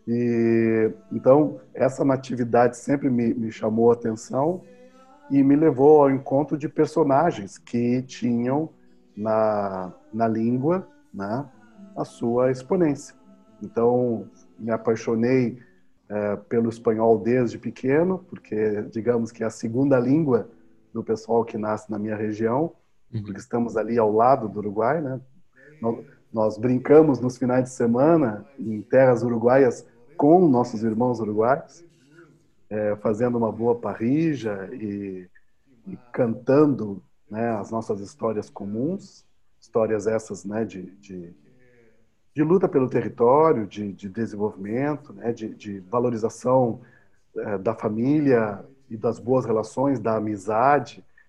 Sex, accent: male, Brazilian